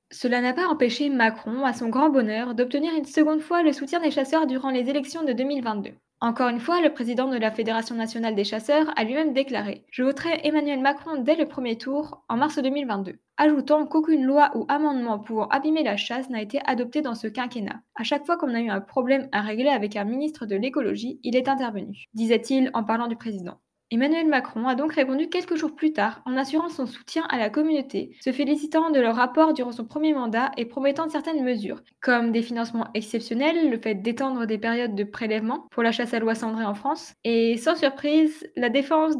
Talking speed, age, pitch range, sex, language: 210 wpm, 10-29, 230-295 Hz, female, French